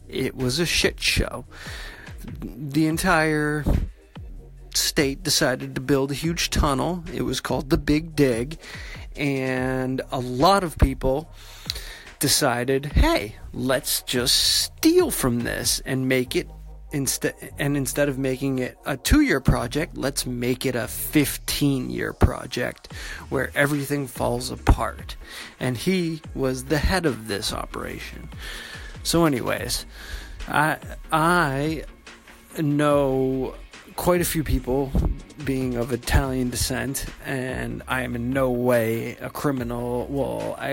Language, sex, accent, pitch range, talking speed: English, male, American, 125-150 Hz, 125 wpm